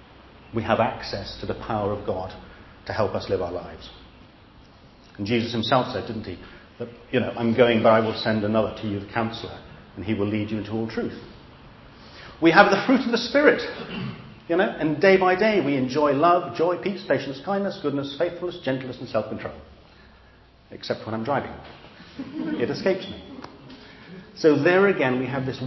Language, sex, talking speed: English, male, 185 wpm